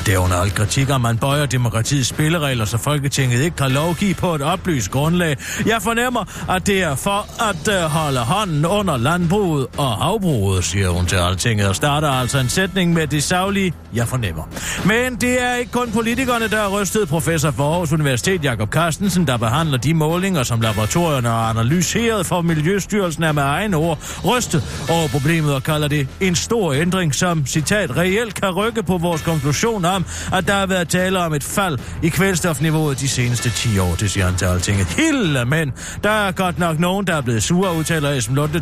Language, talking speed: Danish, 190 wpm